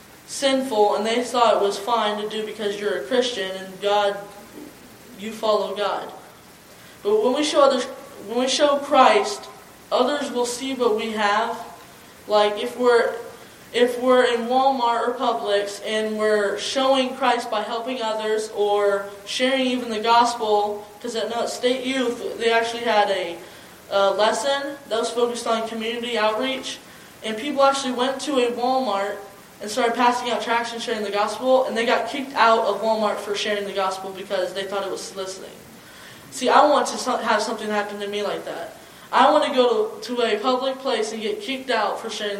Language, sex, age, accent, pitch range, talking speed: English, female, 20-39, American, 205-245 Hz, 180 wpm